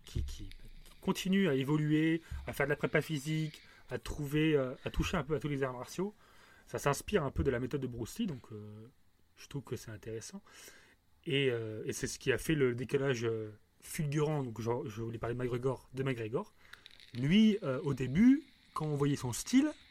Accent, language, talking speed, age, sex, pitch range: French, French, 210 wpm, 30-49, male, 120-170 Hz